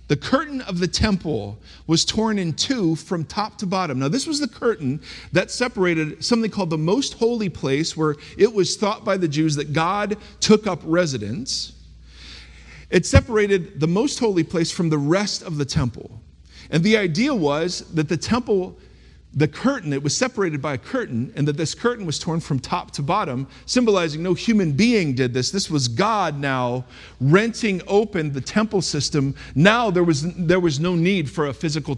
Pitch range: 140-205 Hz